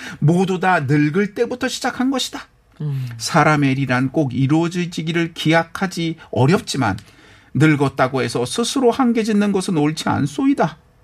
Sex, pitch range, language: male, 135-205 Hz, Korean